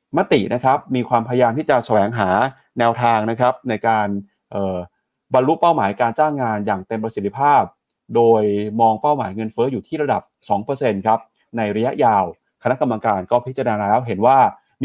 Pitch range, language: 110-140 Hz, Thai